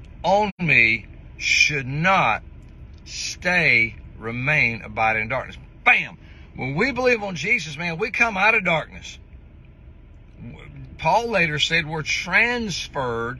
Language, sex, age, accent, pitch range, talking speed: English, male, 60-79, American, 115-155 Hz, 115 wpm